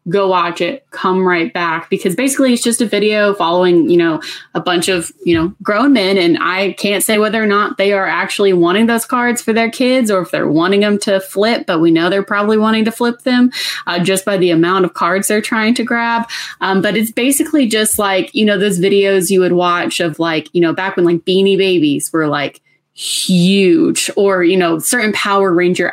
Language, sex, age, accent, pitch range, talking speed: English, female, 20-39, American, 180-230 Hz, 220 wpm